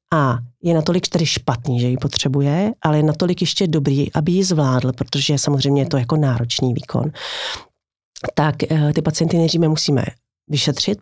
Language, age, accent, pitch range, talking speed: Czech, 40-59, native, 135-160 Hz, 160 wpm